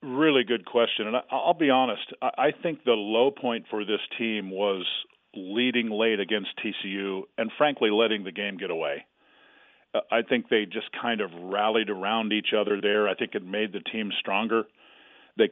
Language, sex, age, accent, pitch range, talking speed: English, male, 40-59, American, 105-120 Hz, 180 wpm